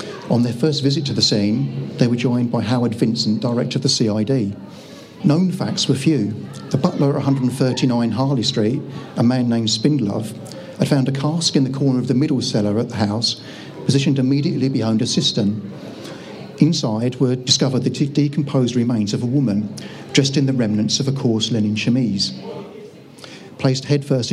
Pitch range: 110-140 Hz